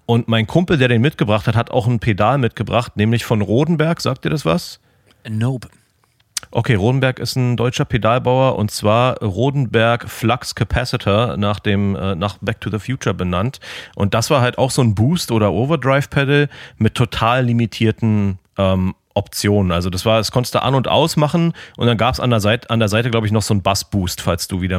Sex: male